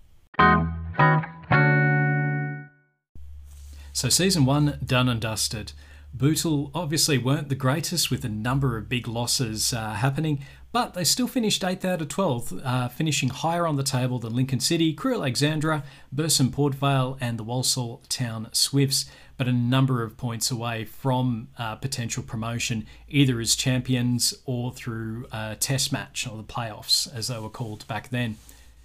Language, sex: English, male